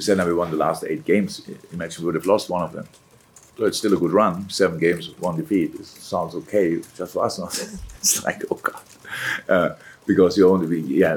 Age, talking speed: 50-69, 235 wpm